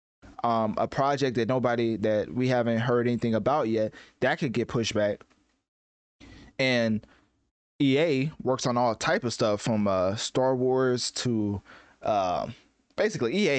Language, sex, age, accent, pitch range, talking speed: English, male, 20-39, American, 110-130 Hz, 145 wpm